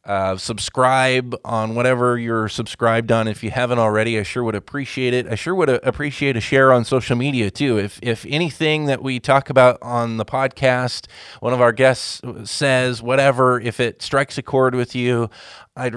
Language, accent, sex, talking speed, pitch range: English, American, male, 190 wpm, 110-130 Hz